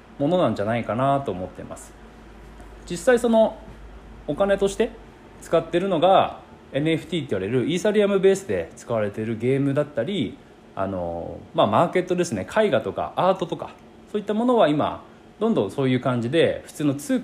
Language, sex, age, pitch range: Japanese, male, 20-39, 115-190 Hz